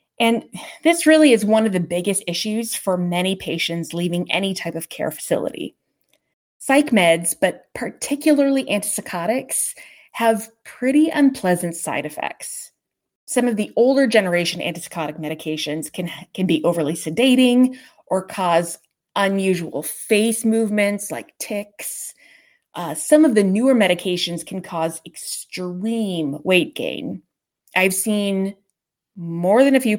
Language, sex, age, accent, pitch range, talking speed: English, female, 20-39, American, 170-235 Hz, 125 wpm